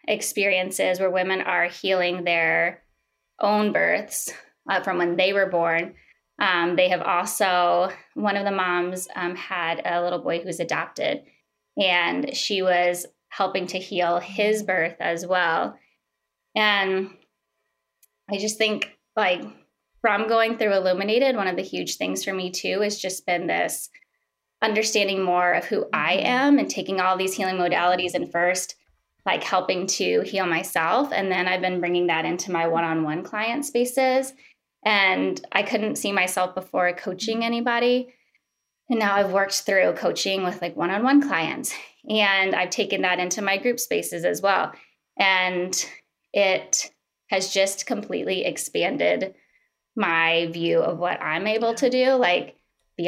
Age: 20-39